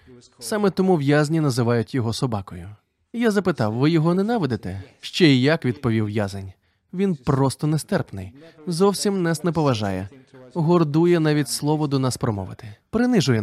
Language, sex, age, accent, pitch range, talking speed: Ukrainian, male, 20-39, native, 125-195 Hz, 135 wpm